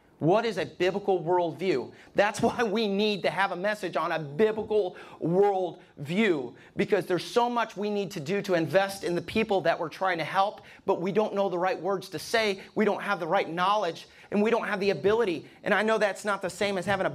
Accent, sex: American, male